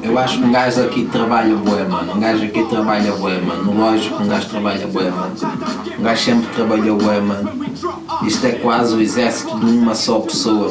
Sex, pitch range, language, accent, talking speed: male, 105-135 Hz, Portuguese, Portuguese, 205 wpm